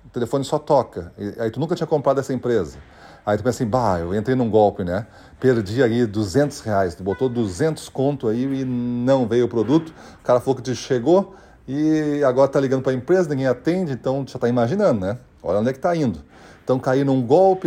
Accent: Brazilian